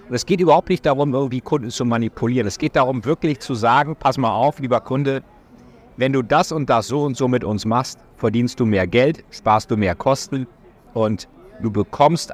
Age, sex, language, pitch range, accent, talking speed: 50-69, male, German, 100-135 Hz, German, 210 wpm